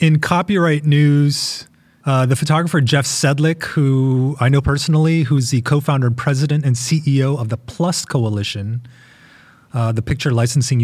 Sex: male